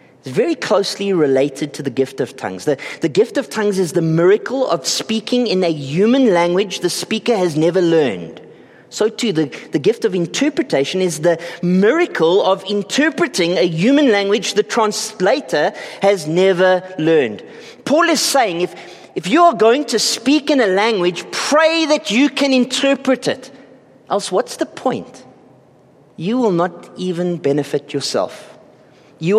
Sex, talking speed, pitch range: male, 160 wpm, 175-265 Hz